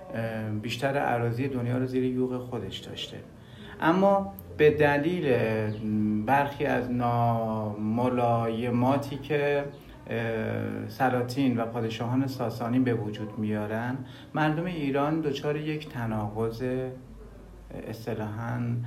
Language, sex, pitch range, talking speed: Persian, male, 115-135 Hz, 90 wpm